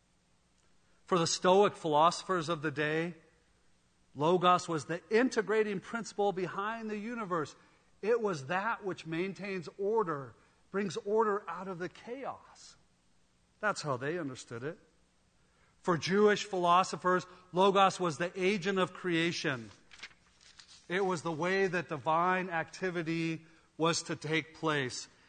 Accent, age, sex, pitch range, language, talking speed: American, 40-59, male, 135-185 Hz, English, 125 wpm